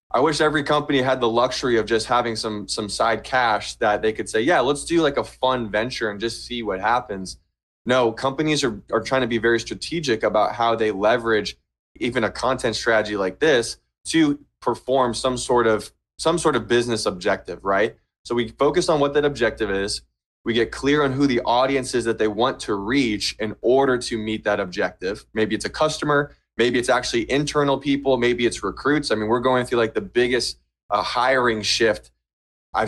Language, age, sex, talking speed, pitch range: English, 20-39, male, 205 wpm, 105-130 Hz